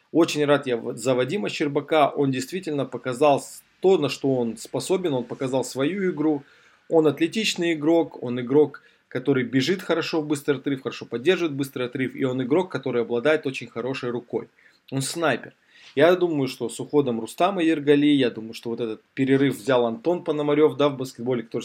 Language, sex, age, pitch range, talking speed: Russian, male, 20-39, 125-155 Hz, 175 wpm